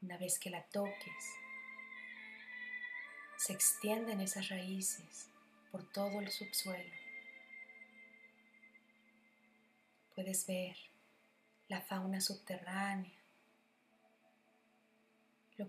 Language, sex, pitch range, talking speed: Spanish, female, 190-220 Hz, 75 wpm